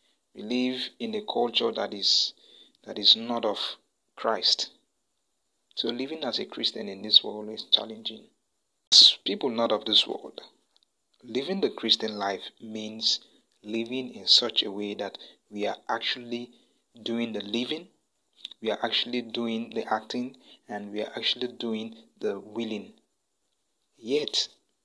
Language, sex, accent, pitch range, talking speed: English, male, Nigerian, 110-140 Hz, 140 wpm